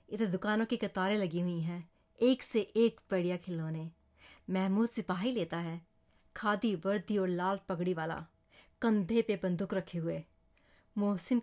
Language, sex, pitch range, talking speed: Hindi, female, 190-245 Hz, 145 wpm